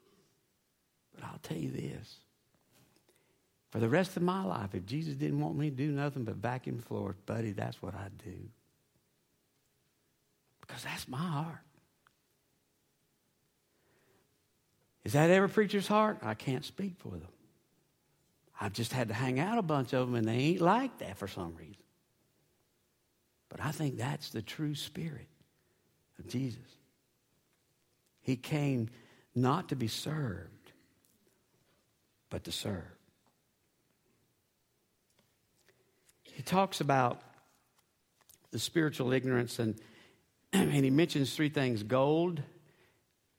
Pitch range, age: 115-150 Hz, 60-79